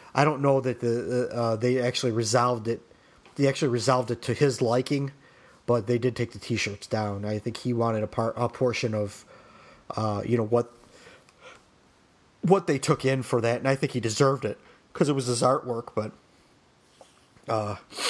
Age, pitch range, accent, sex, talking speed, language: 30-49, 110-130 Hz, American, male, 185 wpm, English